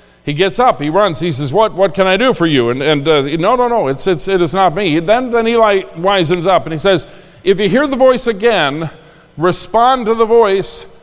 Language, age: English, 50-69